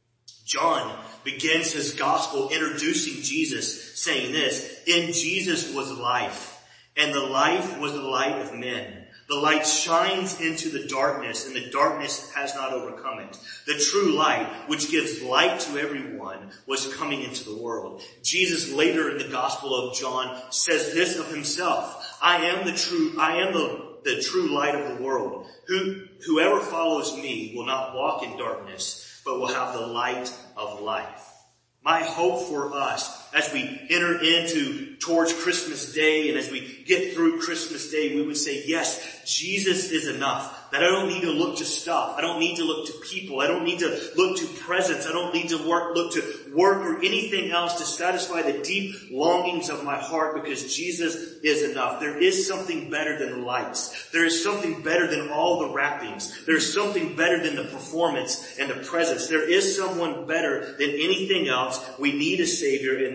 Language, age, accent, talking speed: English, 30-49, American, 185 wpm